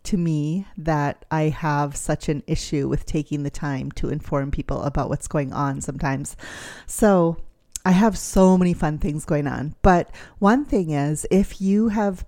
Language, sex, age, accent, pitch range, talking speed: English, female, 30-49, American, 155-180 Hz, 175 wpm